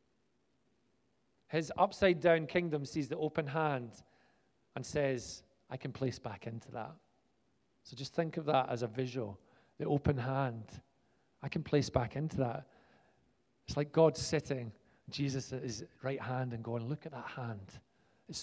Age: 40-59